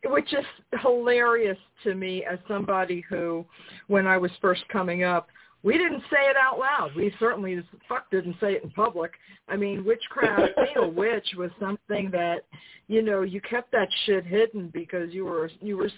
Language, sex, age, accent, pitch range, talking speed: English, female, 50-69, American, 195-280 Hz, 195 wpm